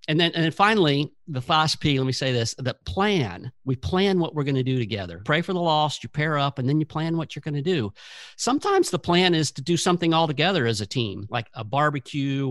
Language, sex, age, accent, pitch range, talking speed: English, male, 50-69, American, 125-155 Hz, 255 wpm